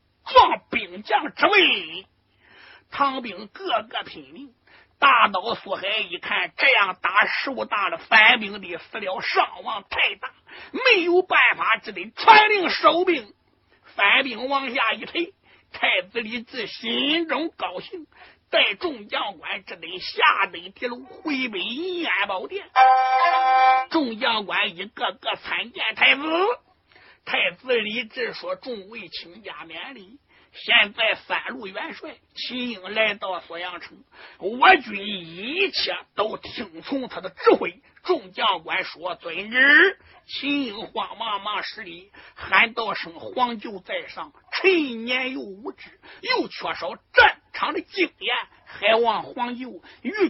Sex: male